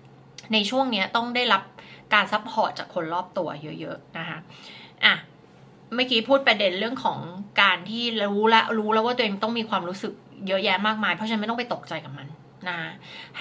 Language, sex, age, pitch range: Thai, female, 20-39, 185-230 Hz